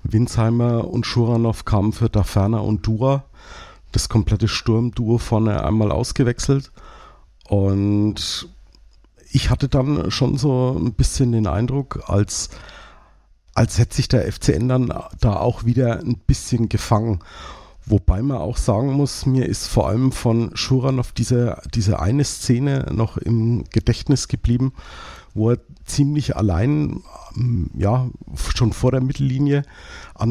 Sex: male